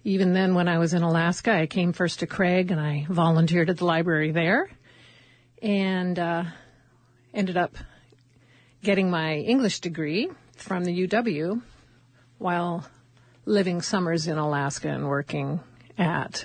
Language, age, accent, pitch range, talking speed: English, 50-69, American, 155-195 Hz, 140 wpm